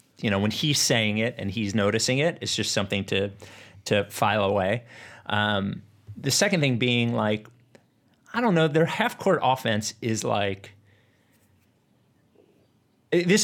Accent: American